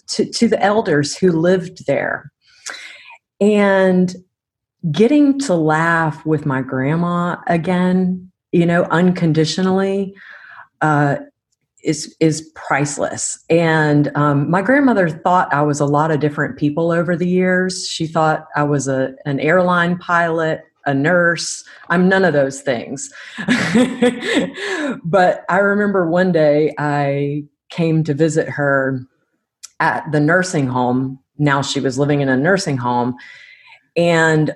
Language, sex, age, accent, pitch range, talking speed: English, female, 40-59, American, 145-195 Hz, 130 wpm